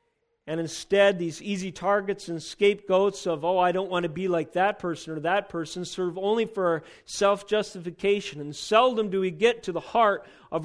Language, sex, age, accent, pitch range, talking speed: English, male, 40-59, American, 170-215 Hz, 190 wpm